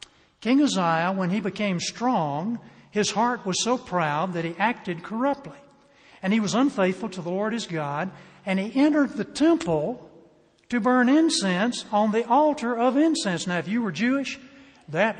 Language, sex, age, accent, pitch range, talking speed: English, male, 60-79, American, 175-235 Hz, 170 wpm